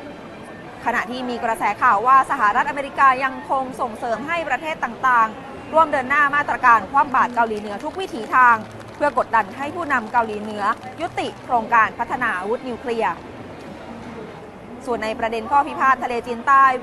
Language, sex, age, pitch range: Thai, female, 20-39, 235-290 Hz